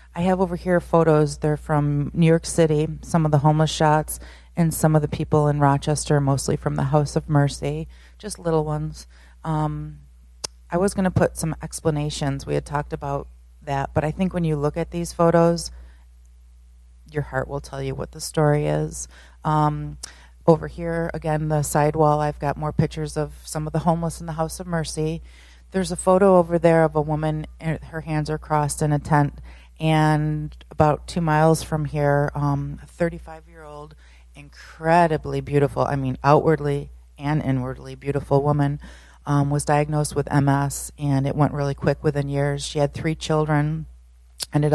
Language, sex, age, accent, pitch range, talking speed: English, female, 30-49, American, 140-155 Hz, 175 wpm